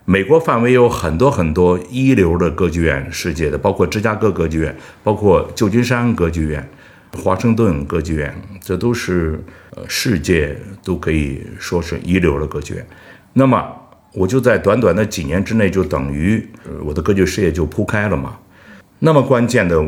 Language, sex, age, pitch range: Chinese, male, 60-79, 85-120 Hz